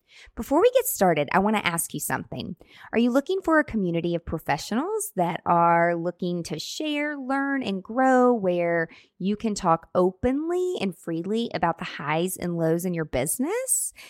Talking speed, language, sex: 175 wpm, English, female